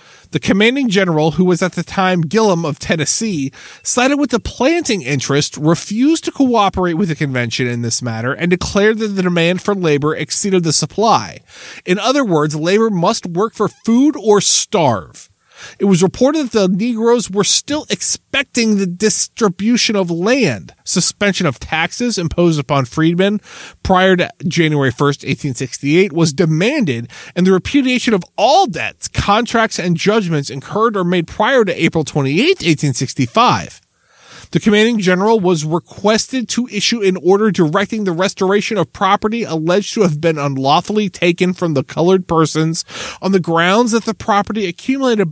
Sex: male